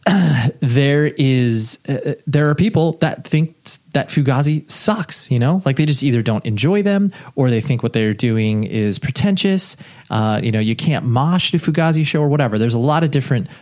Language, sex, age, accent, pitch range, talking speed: English, male, 30-49, American, 115-150 Hz, 195 wpm